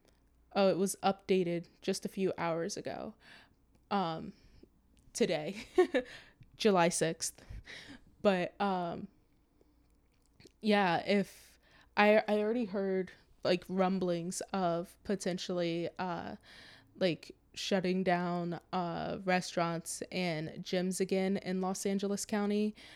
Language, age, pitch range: English, 20-39, 175-200 Hz